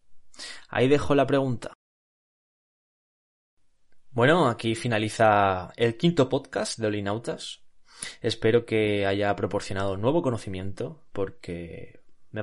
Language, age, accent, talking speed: Spanish, 20-39, Spanish, 95 wpm